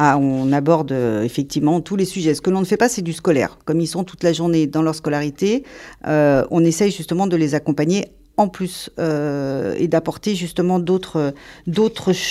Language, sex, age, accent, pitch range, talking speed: French, female, 50-69, French, 155-195 Hz, 185 wpm